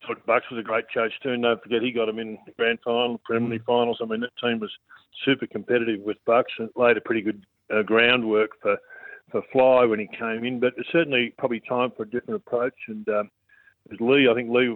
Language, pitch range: English, 110-120 Hz